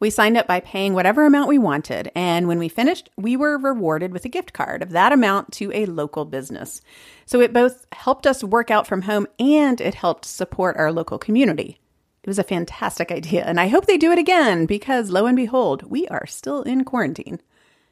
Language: English